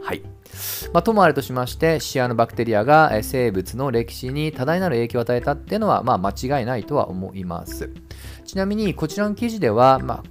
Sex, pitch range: male, 100-155 Hz